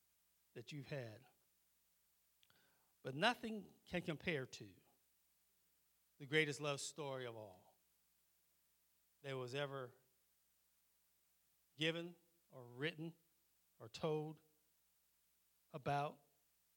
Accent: American